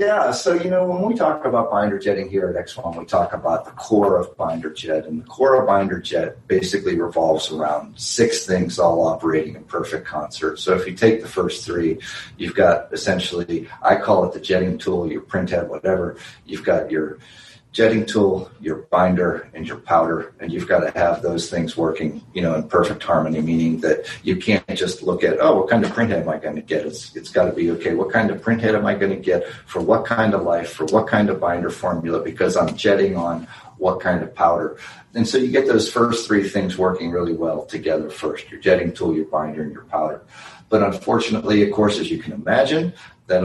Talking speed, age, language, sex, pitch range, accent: 225 wpm, 40-59, English, male, 85-110 Hz, American